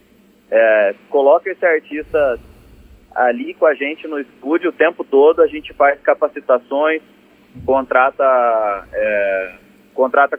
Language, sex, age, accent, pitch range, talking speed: Portuguese, male, 30-49, Brazilian, 130-180 Hz, 105 wpm